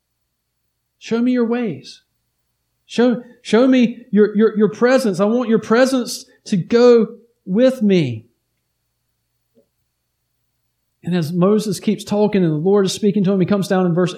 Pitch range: 140-225 Hz